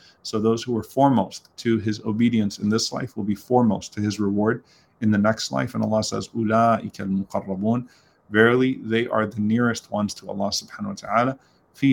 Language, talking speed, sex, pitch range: English, 190 wpm, male, 100-120 Hz